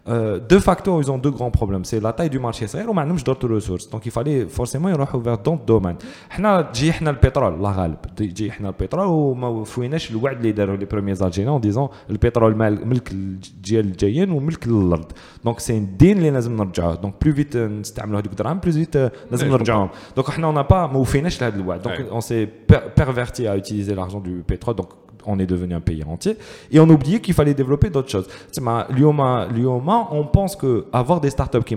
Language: French